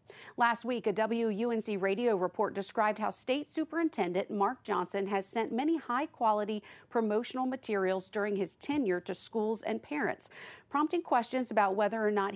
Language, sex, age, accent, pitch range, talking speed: English, female, 40-59, American, 190-230 Hz, 155 wpm